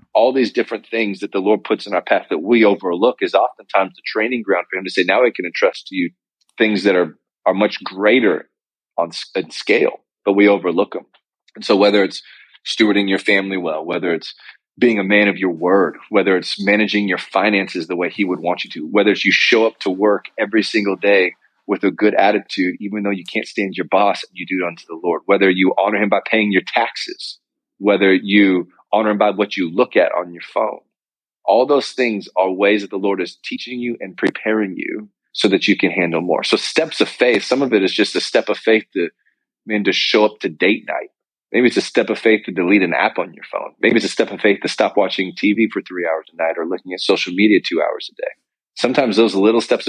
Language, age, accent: English, 30-49, American